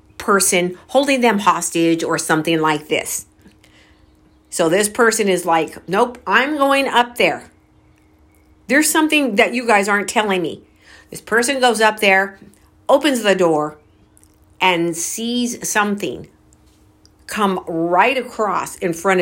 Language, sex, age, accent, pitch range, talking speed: English, female, 50-69, American, 165-220 Hz, 130 wpm